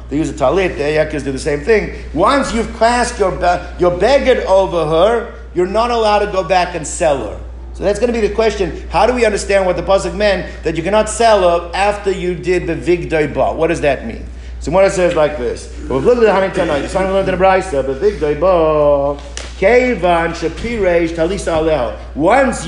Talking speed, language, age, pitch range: 185 wpm, English, 50-69, 165-210 Hz